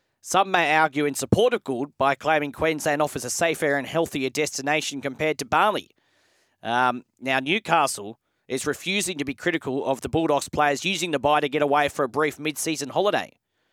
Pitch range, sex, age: 130-165 Hz, male, 30-49